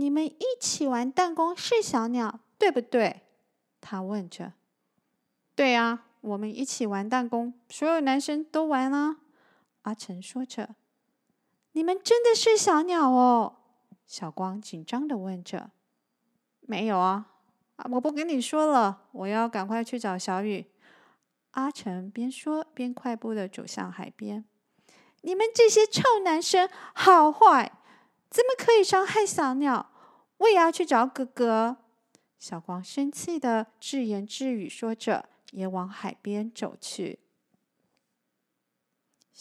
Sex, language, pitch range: female, Chinese, 205-305 Hz